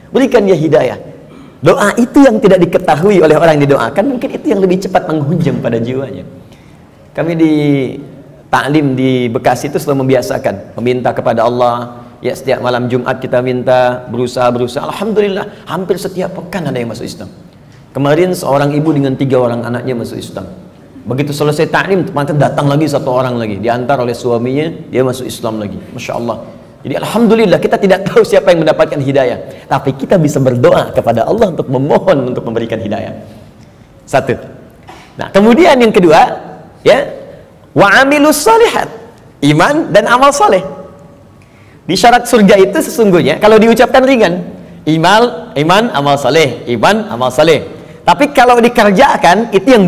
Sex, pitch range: male, 130-205 Hz